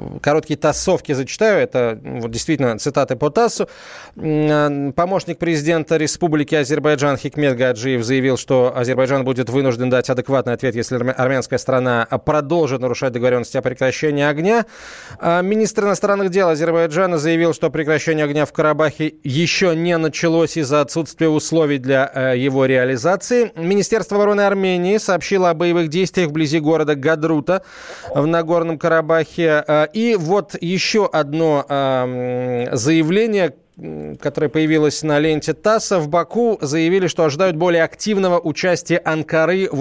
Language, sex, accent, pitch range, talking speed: Russian, male, native, 140-175 Hz, 125 wpm